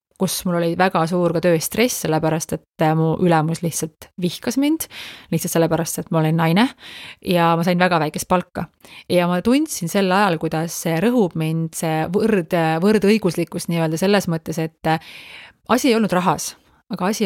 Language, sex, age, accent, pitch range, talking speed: English, female, 30-49, Finnish, 165-215 Hz, 165 wpm